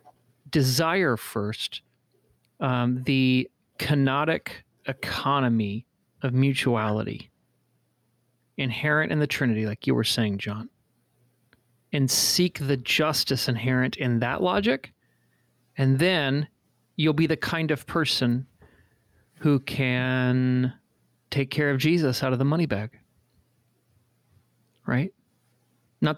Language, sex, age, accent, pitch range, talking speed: English, male, 30-49, American, 115-145 Hz, 105 wpm